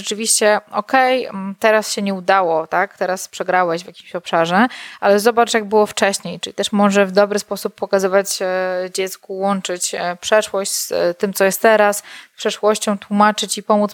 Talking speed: 160 wpm